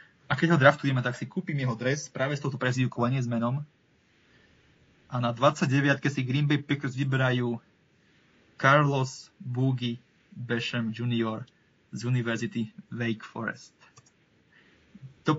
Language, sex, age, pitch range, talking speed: Slovak, male, 20-39, 120-140 Hz, 135 wpm